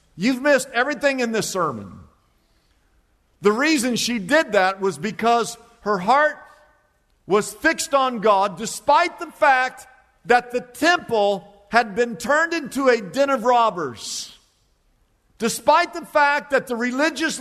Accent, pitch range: American, 225-290 Hz